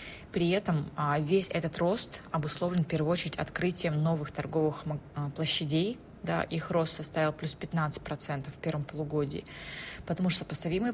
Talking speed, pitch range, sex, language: 130 wpm, 155-175 Hz, female, Russian